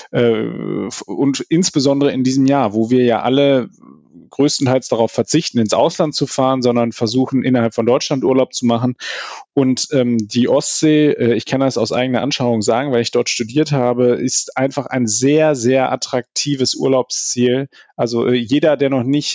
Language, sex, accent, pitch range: German, male, German, 120-135 Hz